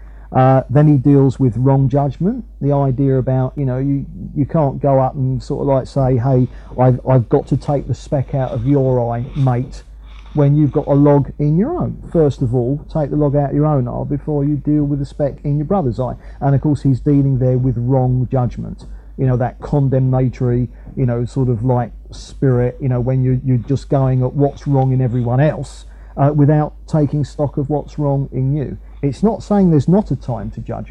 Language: English